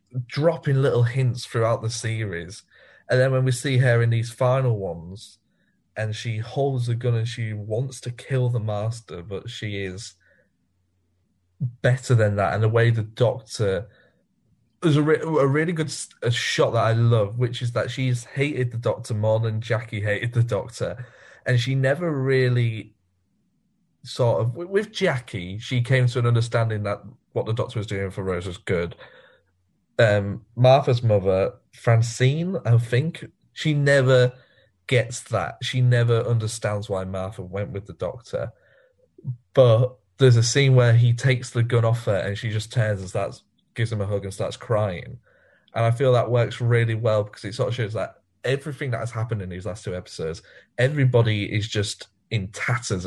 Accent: British